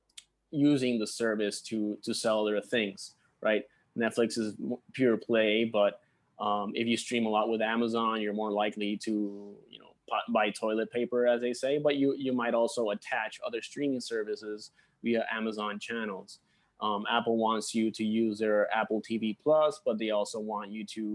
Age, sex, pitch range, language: 20-39, male, 105-120 Hz, English